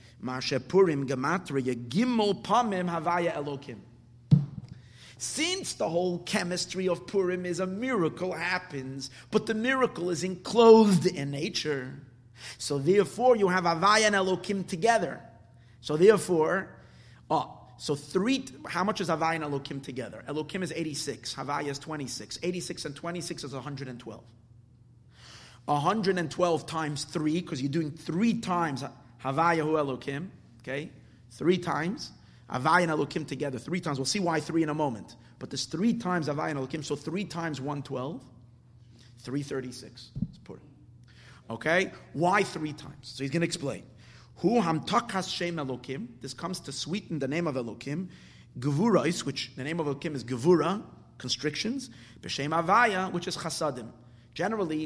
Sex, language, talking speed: male, English, 135 wpm